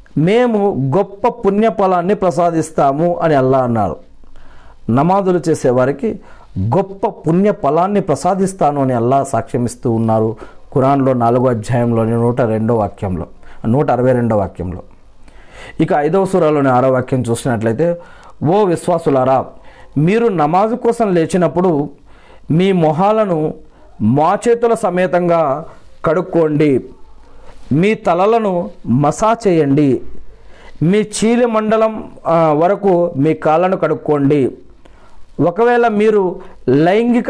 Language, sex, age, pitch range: Telugu, male, 50-69, 140-205 Hz